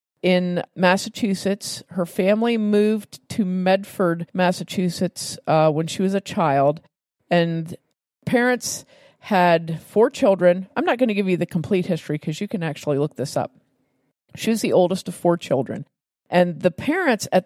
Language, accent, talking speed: English, American, 160 wpm